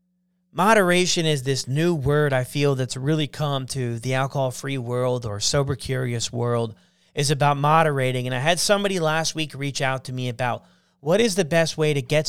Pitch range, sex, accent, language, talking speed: 135-180 Hz, male, American, English, 190 wpm